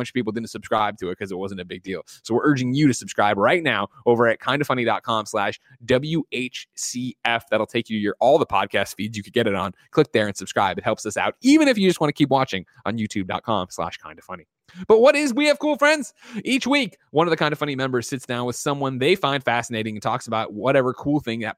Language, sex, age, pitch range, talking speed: English, male, 20-39, 110-150 Hz, 255 wpm